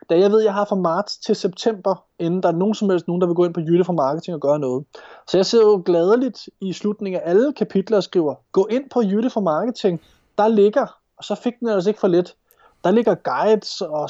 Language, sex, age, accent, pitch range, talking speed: Danish, male, 20-39, native, 165-210 Hz, 255 wpm